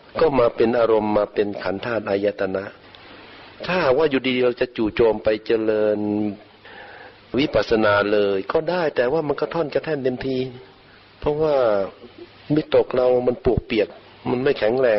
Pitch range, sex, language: 110-135 Hz, male, Thai